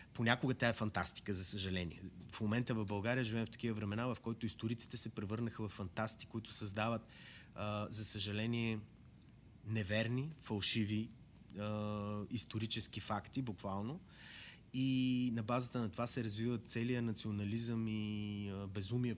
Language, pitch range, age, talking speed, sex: Bulgarian, 100-115 Hz, 30-49, 130 wpm, male